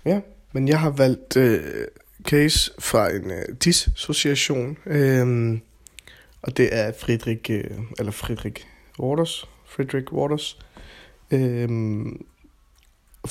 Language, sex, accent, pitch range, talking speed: Danish, male, native, 110-135 Hz, 105 wpm